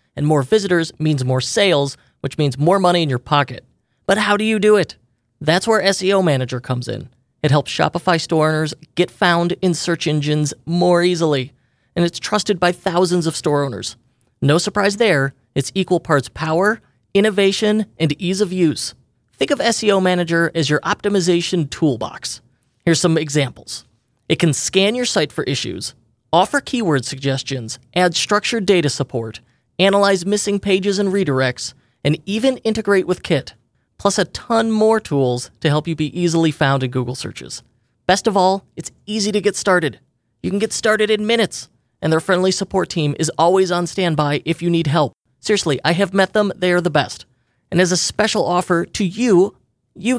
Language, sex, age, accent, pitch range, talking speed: English, male, 30-49, American, 140-200 Hz, 180 wpm